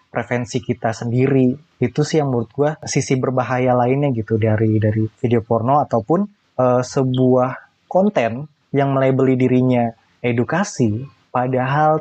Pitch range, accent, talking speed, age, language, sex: 120-150 Hz, native, 125 wpm, 20-39, Indonesian, male